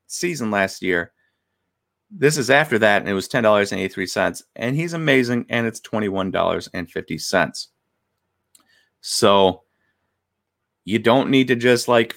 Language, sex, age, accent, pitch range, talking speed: English, male, 30-49, American, 100-125 Hz, 160 wpm